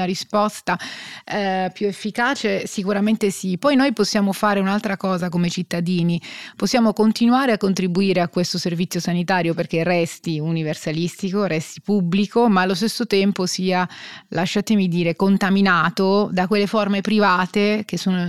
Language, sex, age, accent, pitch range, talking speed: Italian, female, 30-49, native, 180-205 Hz, 135 wpm